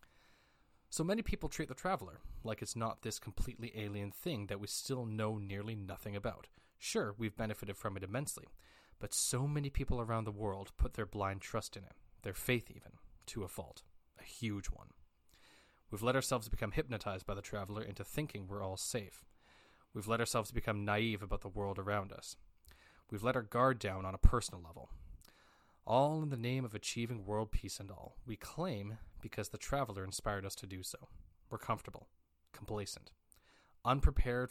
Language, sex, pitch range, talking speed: English, male, 85-115 Hz, 180 wpm